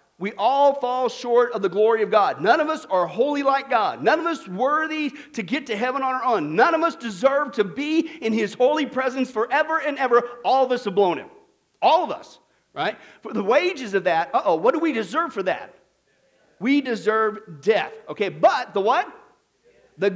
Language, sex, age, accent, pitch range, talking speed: English, male, 50-69, American, 215-290 Hz, 210 wpm